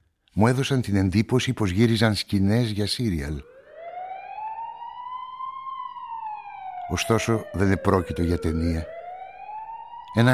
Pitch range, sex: 95-120 Hz, male